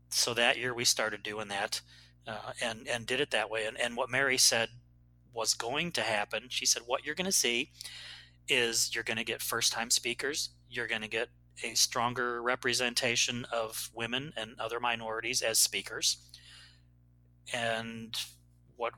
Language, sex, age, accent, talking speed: English, male, 30-49, American, 170 wpm